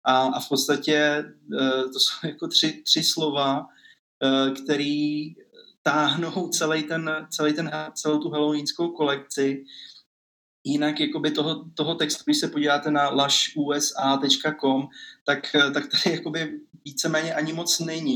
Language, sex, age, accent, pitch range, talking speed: Czech, male, 20-39, native, 135-155 Hz, 120 wpm